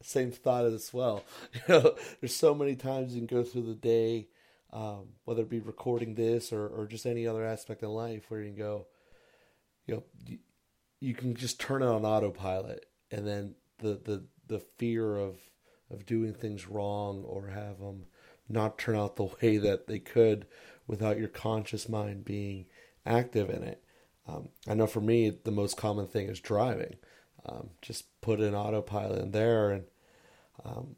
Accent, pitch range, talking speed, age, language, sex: American, 100-115 Hz, 180 wpm, 30-49, English, male